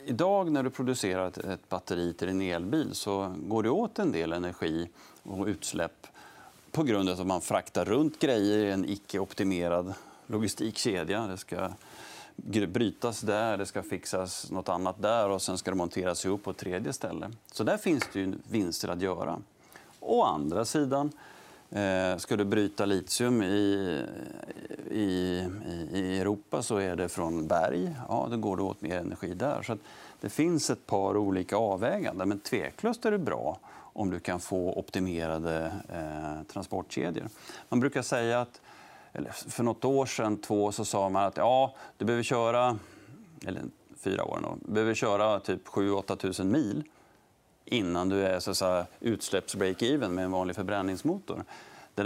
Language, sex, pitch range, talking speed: Swedish, male, 90-105 Hz, 165 wpm